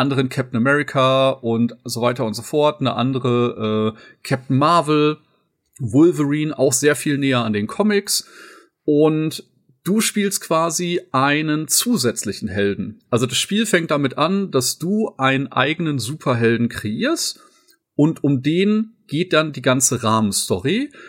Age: 40-59